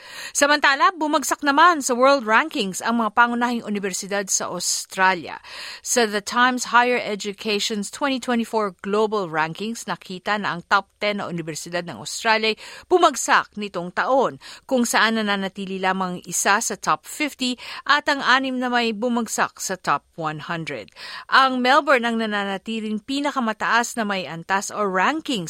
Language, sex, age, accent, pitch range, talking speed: Filipino, female, 50-69, native, 195-245 Hz, 140 wpm